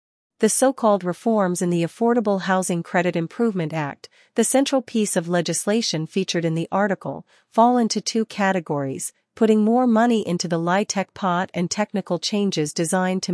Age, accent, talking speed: 40-59, American, 160 wpm